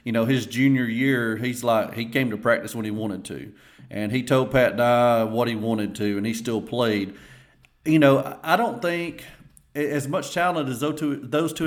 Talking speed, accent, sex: 205 wpm, American, male